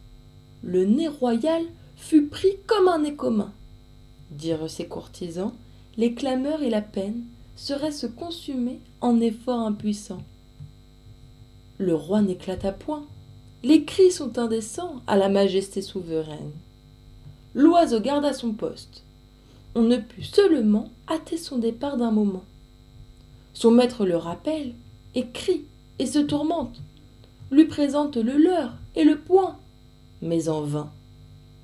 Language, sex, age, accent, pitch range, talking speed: French, female, 30-49, French, 195-300 Hz, 125 wpm